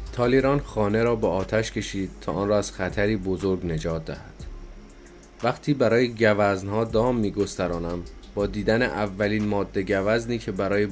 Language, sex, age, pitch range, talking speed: Persian, male, 30-49, 90-105 Hz, 145 wpm